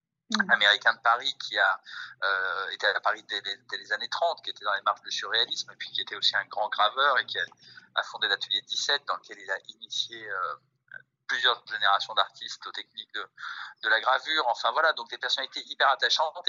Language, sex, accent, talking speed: French, male, French, 220 wpm